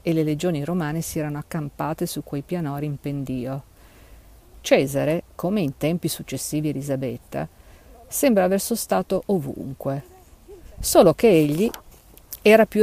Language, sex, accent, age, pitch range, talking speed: Italian, female, native, 50-69, 140-180 Hz, 125 wpm